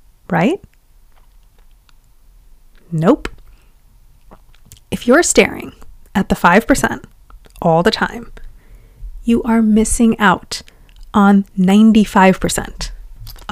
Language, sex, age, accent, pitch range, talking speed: English, female, 20-39, American, 170-240 Hz, 75 wpm